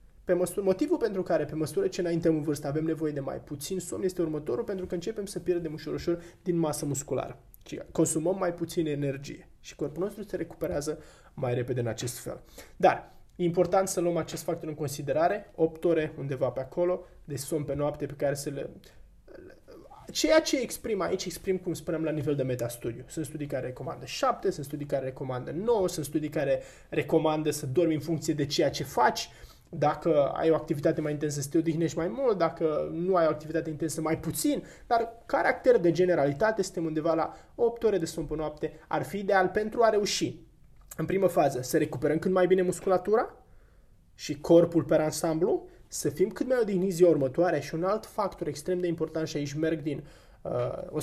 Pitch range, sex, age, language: 150-180 Hz, male, 20-39, Romanian